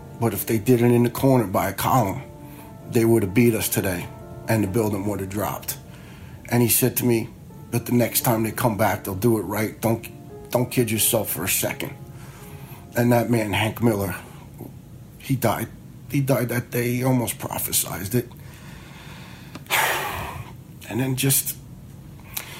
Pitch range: 100-120 Hz